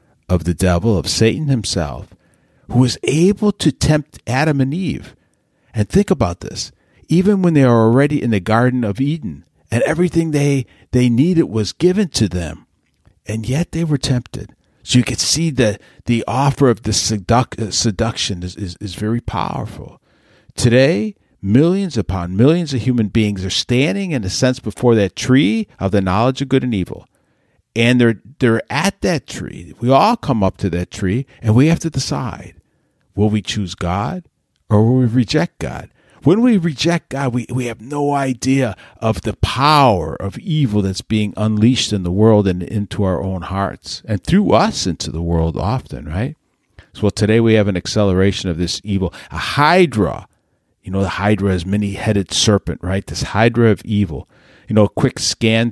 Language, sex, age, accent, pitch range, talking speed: English, male, 50-69, American, 100-135 Hz, 185 wpm